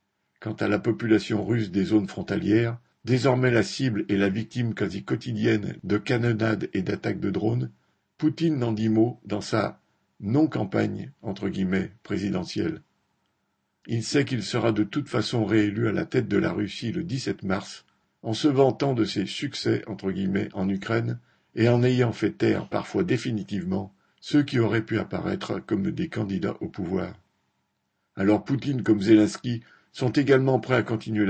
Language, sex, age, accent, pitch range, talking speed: French, male, 50-69, French, 100-120 Hz, 170 wpm